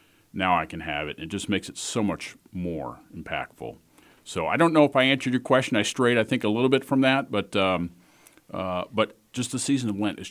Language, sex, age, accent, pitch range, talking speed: English, male, 40-59, American, 85-120 Hz, 240 wpm